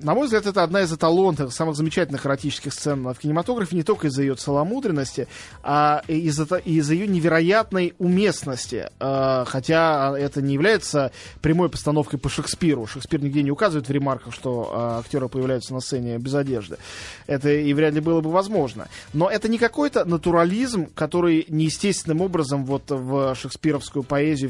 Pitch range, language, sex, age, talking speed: 140-185 Hz, Russian, male, 20-39, 155 wpm